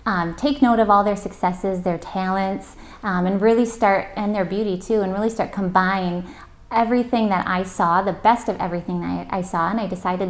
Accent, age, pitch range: American, 20-39, 180-210 Hz